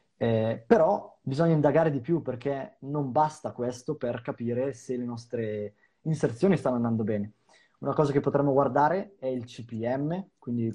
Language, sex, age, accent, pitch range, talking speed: Italian, male, 20-39, native, 115-140 Hz, 160 wpm